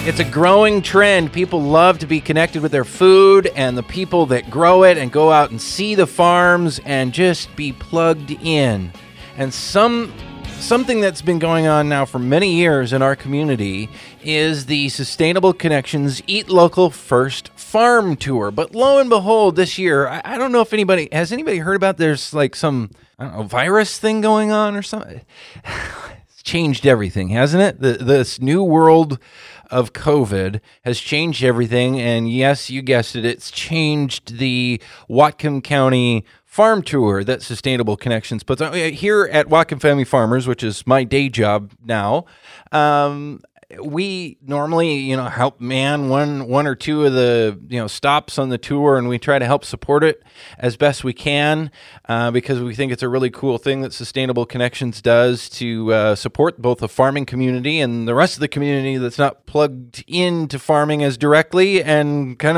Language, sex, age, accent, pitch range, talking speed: English, male, 20-39, American, 125-165 Hz, 180 wpm